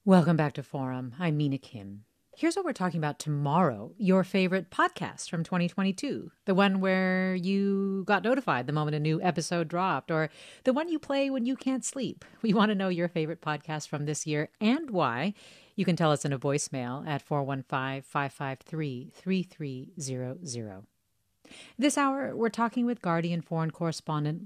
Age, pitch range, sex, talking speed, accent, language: 40-59, 150-195 Hz, female, 165 wpm, American, English